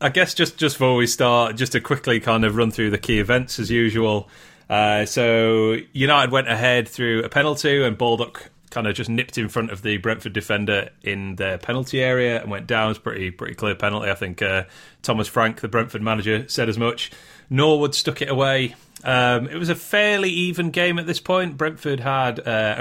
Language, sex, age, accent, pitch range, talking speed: English, male, 30-49, British, 110-145 Hz, 215 wpm